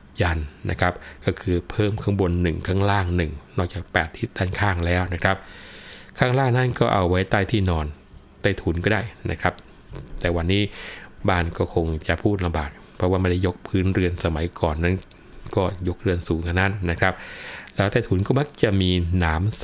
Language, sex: Thai, male